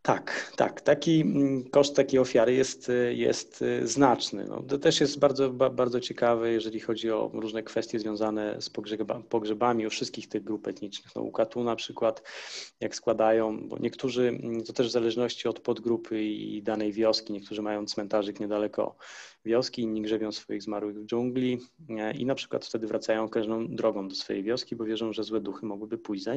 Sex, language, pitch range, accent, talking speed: male, Polish, 105-120 Hz, native, 175 wpm